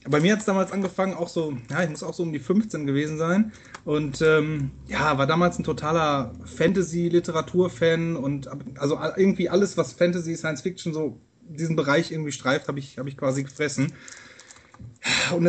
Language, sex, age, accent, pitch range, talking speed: German, male, 30-49, German, 140-175 Hz, 175 wpm